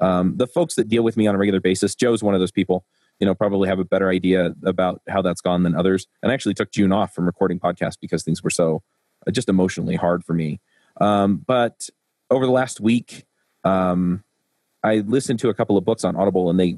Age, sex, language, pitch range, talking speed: 30-49, male, English, 90-110 Hz, 235 wpm